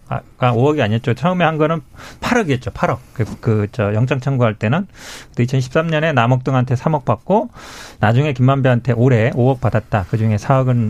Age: 40-59